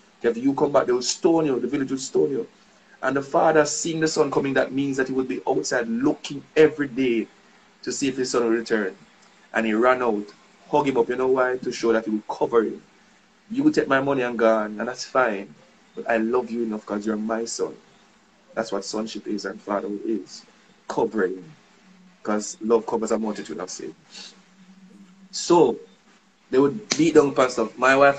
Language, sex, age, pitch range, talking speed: English, male, 20-39, 115-155 Hz, 205 wpm